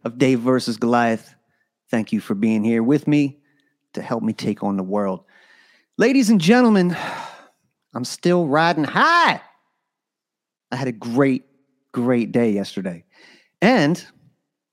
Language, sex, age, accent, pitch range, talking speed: English, male, 30-49, American, 110-160 Hz, 135 wpm